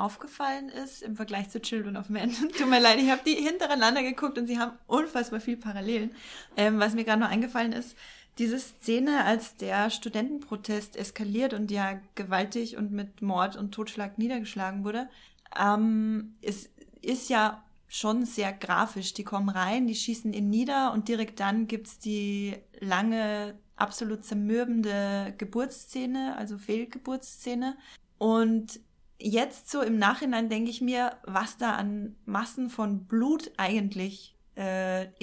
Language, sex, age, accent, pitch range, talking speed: German, female, 20-39, German, 205-240 Hz, 150 wpm